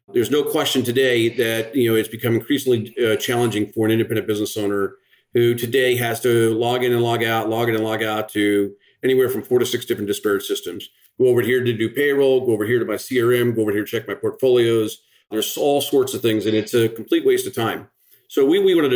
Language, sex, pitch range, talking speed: English, male, 115-145 Hz, 235 wpm